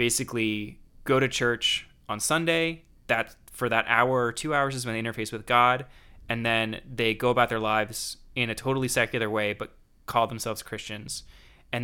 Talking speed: 180 wpm